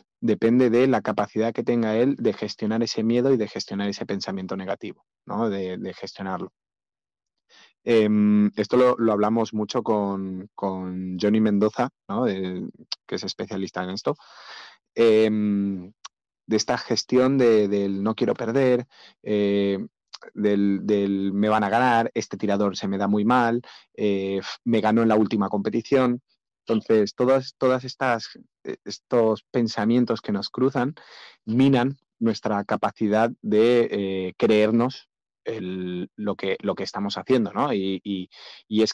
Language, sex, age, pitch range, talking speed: Spanish, male, 30-49, 100-120 Hz, 145 wpm